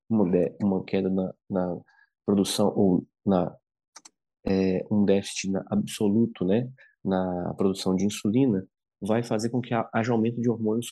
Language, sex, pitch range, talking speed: English, male, 100-125 Hz, 135 wpm